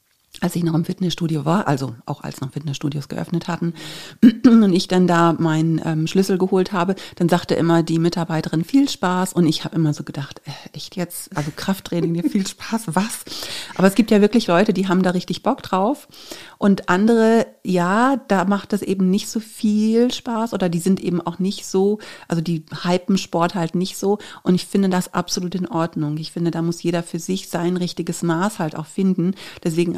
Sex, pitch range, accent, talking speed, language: female, 165-185 Hz, German, 200 wpm, German